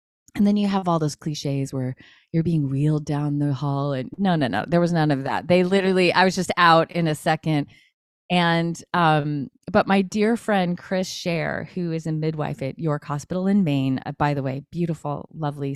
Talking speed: 210 wpm